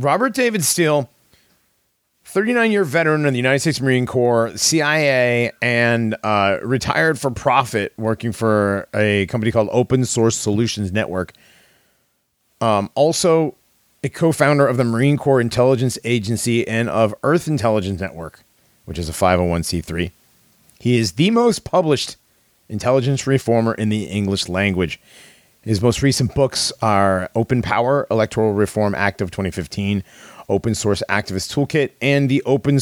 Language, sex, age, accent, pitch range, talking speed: English, male, 40-59, American, 100-130 Hz, 135 wpm